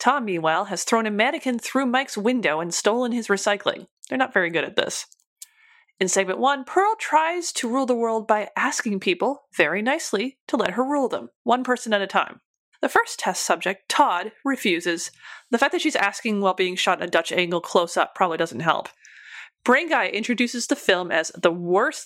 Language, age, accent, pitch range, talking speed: English, 30-49, American, 185-270 Hz, 200 wpm